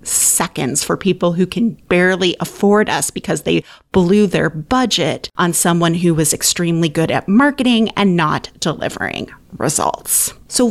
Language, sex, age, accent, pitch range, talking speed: English, female, 30-49, American, 175-220 Hz, 145 wpm